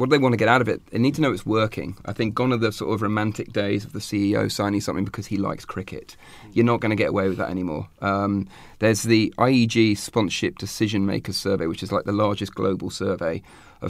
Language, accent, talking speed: English, British, 250 wpm